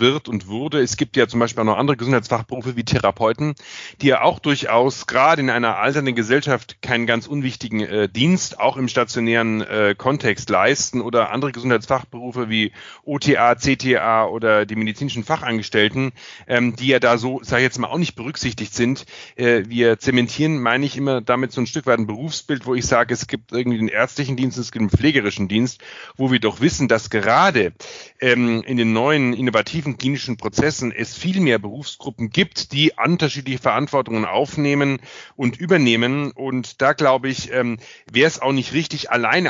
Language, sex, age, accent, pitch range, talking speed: German, male, 30-49, German, 115-140 Hz, 180 wpm